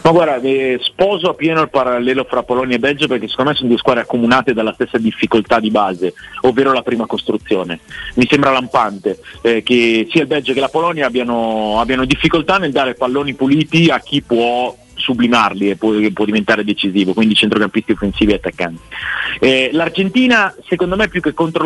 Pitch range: 115-160 Hz